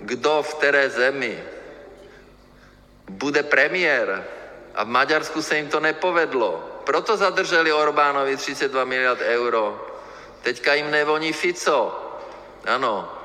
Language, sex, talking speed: Czech, male, 110 wpm